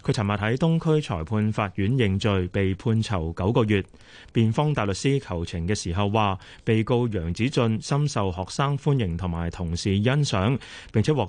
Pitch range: 95-125 Hz